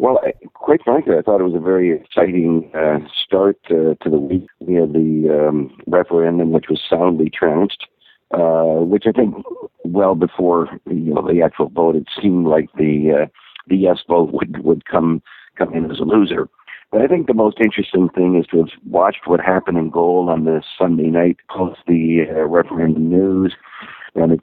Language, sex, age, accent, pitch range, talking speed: English, male, 50-69, American, 80-95 Hz, 190 wpm